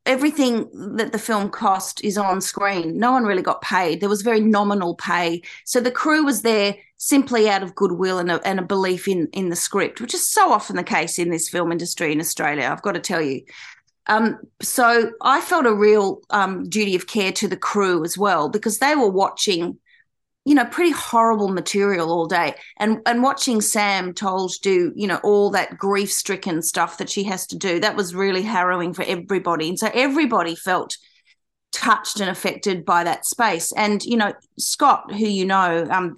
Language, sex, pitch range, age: English, female, 185-225 Hz, 30-49